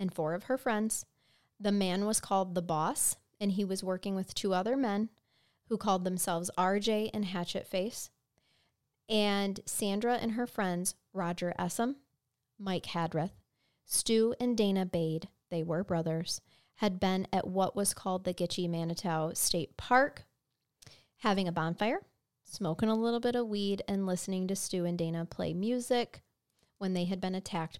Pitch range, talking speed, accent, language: 175-210 Hz, 160 wpm, American, English